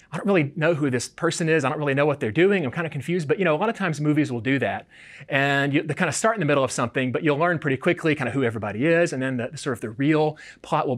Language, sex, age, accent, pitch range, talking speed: English, male, 30-49, American, 135-170 Hz, 330 wpm